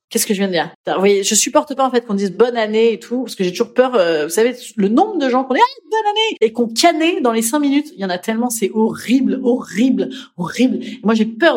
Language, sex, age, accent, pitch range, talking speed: French, female, 30-49, French, 210-295 Hz, 290 wpm